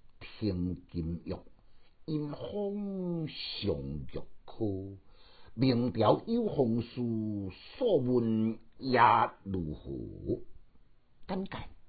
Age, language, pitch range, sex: 60-79, Chinese, 95-155 Hz, male